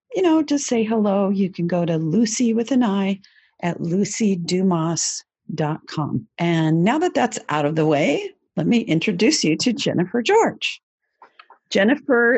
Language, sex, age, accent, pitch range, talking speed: English, female, 50-69, American, 165-245 Hz, 150 wpm